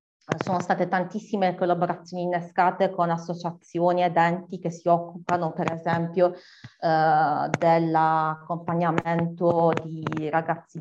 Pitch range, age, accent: 165-185 Hz, 30-49, native